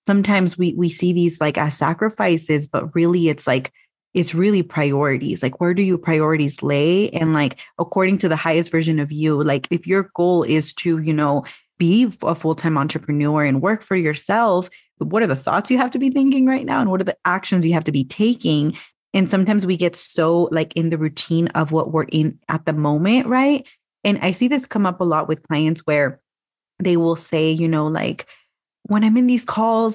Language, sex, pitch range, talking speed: English, female, 160-205 Hz, 210 wpm